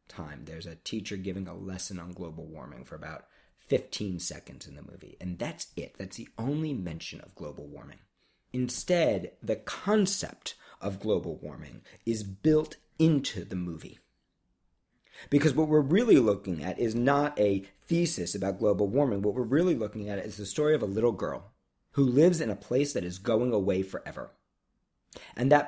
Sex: male